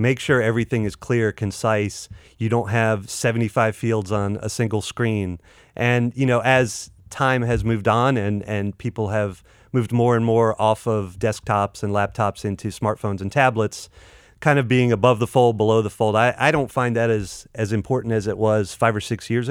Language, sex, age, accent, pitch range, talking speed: English, male, 30-49, American, 105-120 Hz, 195 wpm